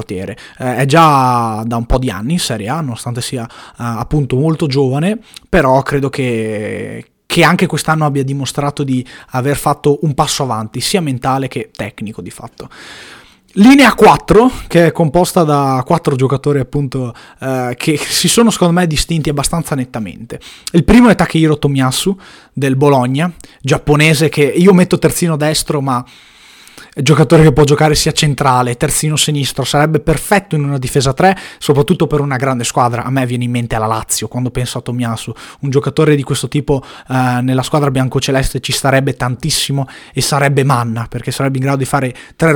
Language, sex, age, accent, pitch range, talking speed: Italian, male, 20-39, native, 130-160 Hz, 170 wpm